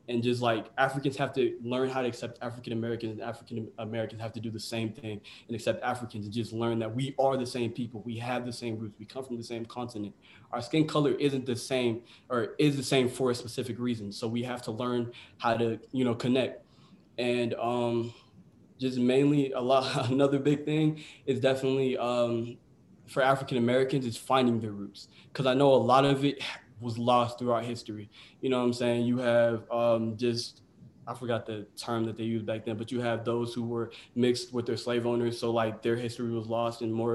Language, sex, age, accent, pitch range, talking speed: English, male, 20-39, American, 115-125 Hz, 220 wpm